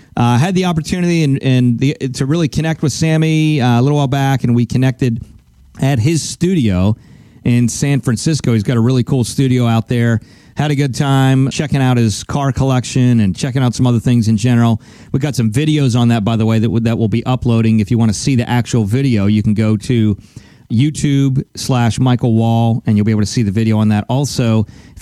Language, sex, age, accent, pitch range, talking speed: English, male, 40-59, American, 115-145 Hz, 220 wpm